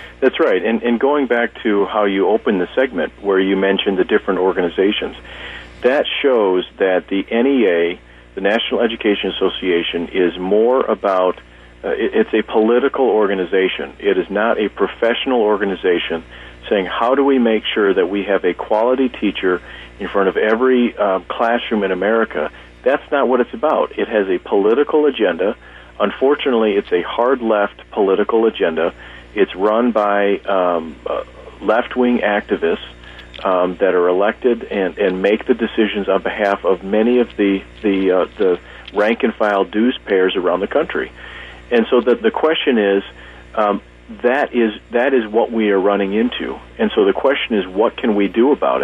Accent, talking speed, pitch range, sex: American, 165 wpm, 85-115 Hz, male